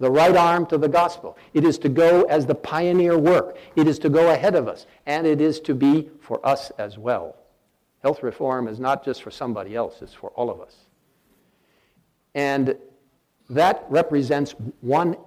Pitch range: 125-165 Hz